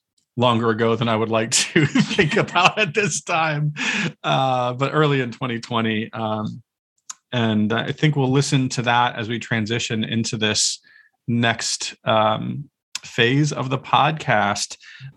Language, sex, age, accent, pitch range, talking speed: English, male, 40-59, American, 115-140 Hz, 140 wpm